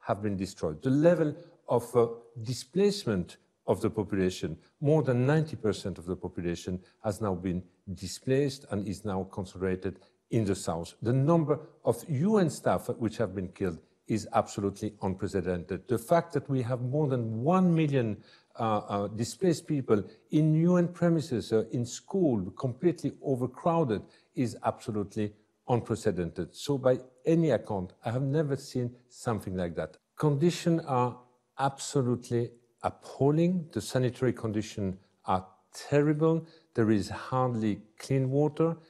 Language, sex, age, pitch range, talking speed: English, male, 50-69, 105-145 Hz, 135 wpm